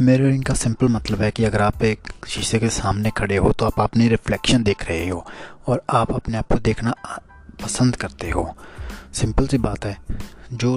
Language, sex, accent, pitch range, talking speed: Hindi, male, native, 100-120 Hz, 195 wpm